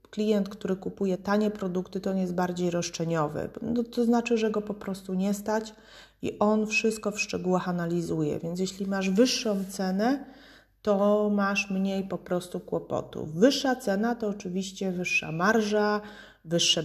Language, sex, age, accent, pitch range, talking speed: Polish, female, 30-49, native, 170-210 Hz, 155 wpm